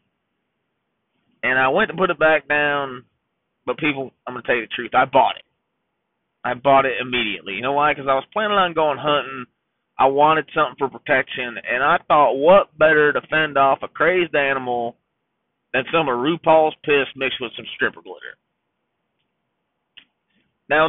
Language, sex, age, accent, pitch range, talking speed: English, male, 30-49, American, 135-175 Hz, 175 wpm